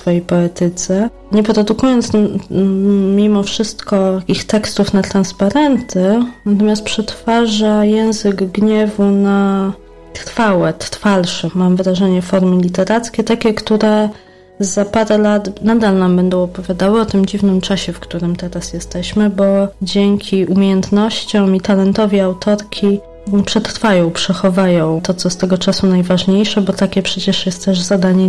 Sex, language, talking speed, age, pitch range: female, Polish, 125 wpm, 20-39, 180-210 Hz